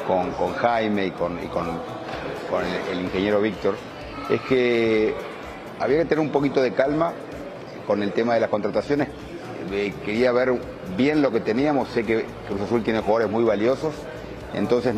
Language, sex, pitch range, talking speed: Spanish, male, 95-120 Hz, 160 wpm